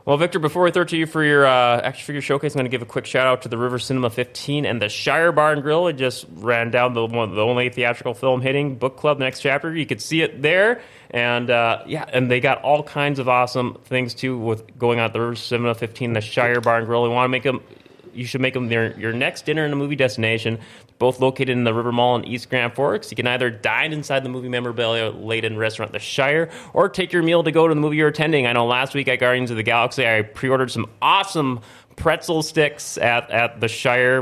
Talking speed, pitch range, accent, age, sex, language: 255 wpm, 115-135 Hz, American, 20-39, male, English